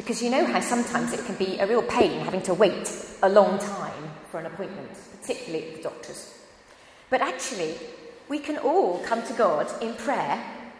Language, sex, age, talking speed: English, female, 30-49, 185 wpm